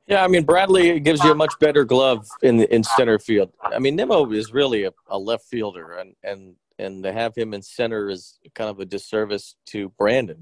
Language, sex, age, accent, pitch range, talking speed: English, male, 40-59, American, 105-135 Hz, 220 wpm